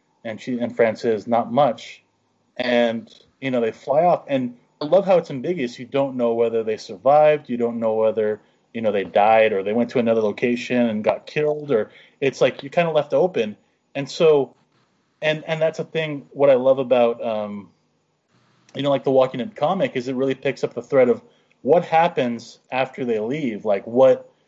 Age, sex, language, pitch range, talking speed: 30-49, male, English, 115-145 Hz, 205 wpm